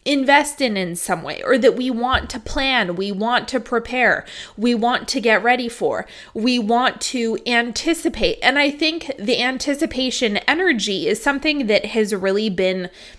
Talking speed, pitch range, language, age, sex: 170 wpm, 215-275 Hz, English, 20-39, female